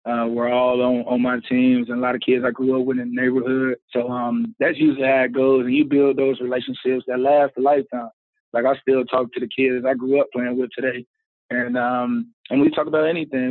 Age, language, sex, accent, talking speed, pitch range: 20-39, English, male, American, 245 wpm, 125-140 Hz